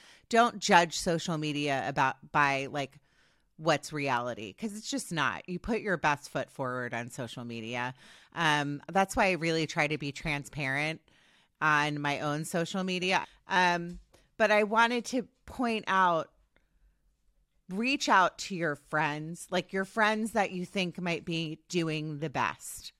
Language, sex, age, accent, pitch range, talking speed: English, female, 30-49, American, 150-185 Hz, 155 wpm